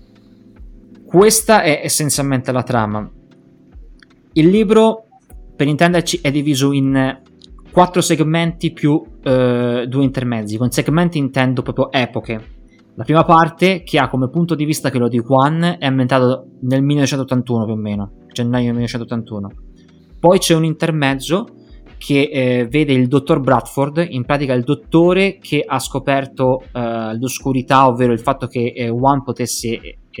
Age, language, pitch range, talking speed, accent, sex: 20-39, Italian, 120-145 Hz, 140 wpm, native, male